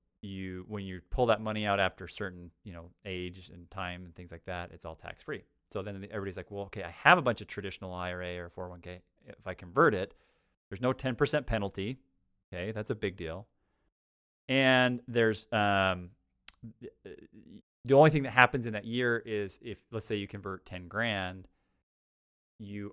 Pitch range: 90-115 Hz